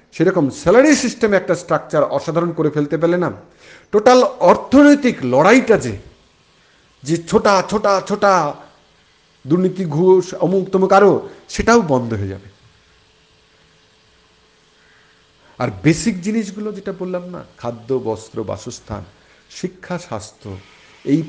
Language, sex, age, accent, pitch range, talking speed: Bengali, male, 50-69, native, 125-205 Hz, 105 wpm